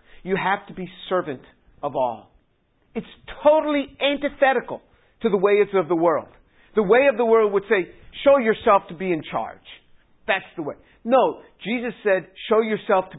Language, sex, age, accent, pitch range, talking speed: English, male, 50-69, American, 155-220 Hz, 175 wpm